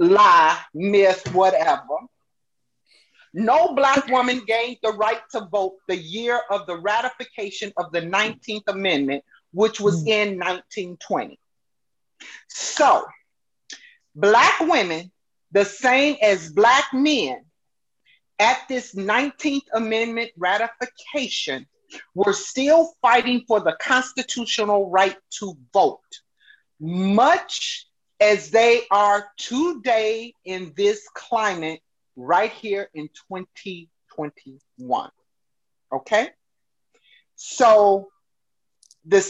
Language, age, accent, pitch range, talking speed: English, 40-59, American, 190-255 Hz, 95 wpm